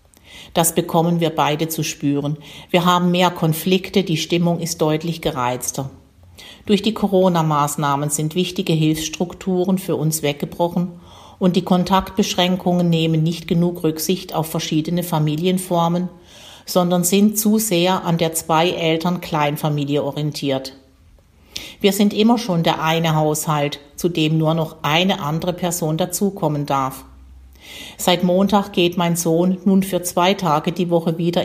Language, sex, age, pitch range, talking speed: German, female, 50-69, 155-180 Hz, 135 wpm